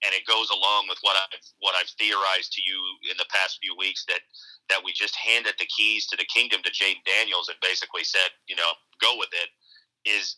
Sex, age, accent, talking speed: male, 40-59, American, 225 wpm